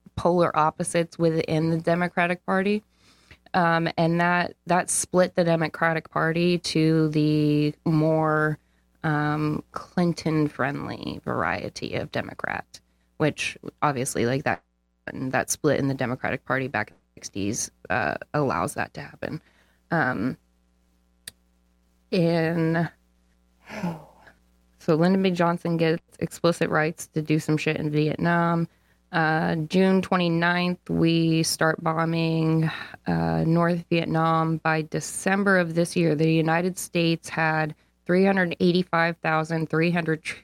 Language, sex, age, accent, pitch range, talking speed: English, female, 20-39, American, 145-170 Hz, 110 wpm